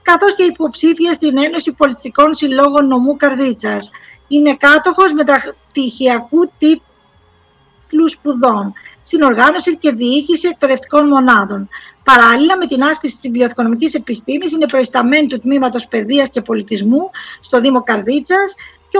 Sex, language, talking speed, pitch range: female, Greek, 115 wpm, 260-325 Hz